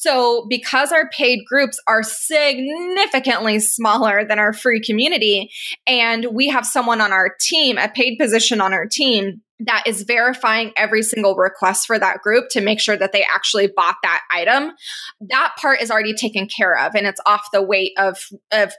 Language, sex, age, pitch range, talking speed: English, female, 20-39, 210-255 Hz, 180 wpm